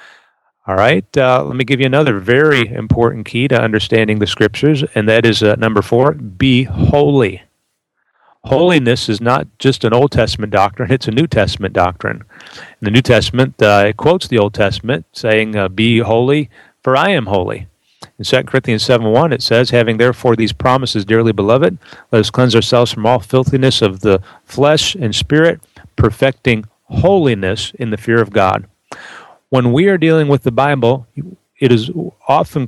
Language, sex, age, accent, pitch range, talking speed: English, male, 40-59, American, 110-135 Hz, 175 wpm